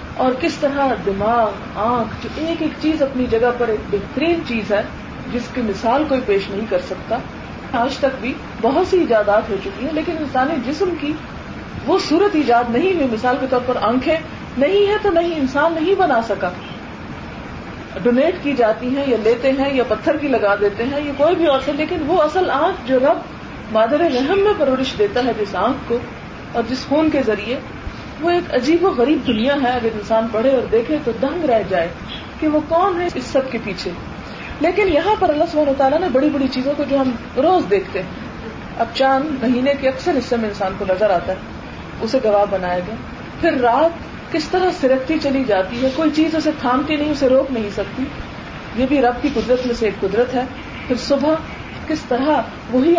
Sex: female